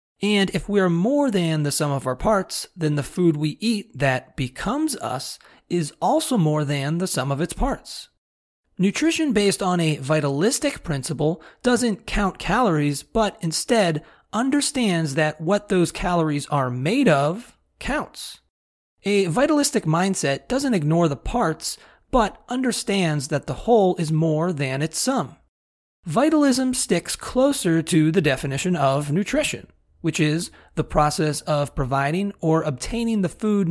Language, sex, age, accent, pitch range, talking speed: English, male, 30-49, American, 150-215 Hz, 150 wpm